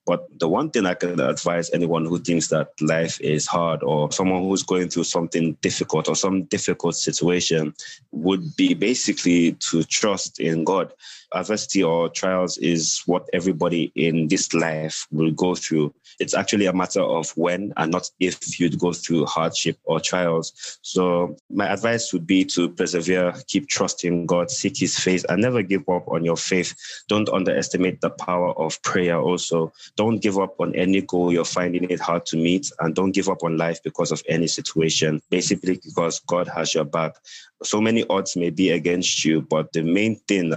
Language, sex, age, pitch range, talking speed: English, male, 20-39, 80-95 Hz, 185 wpm